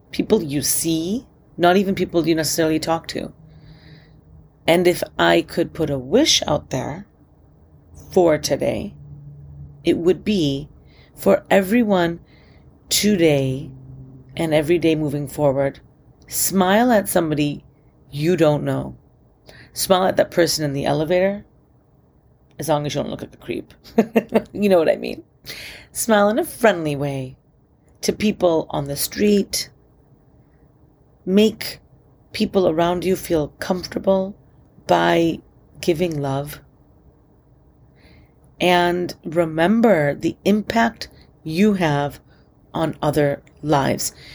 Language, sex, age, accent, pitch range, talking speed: English, female, 30-49, American, 145-185 Hz, 120 wpm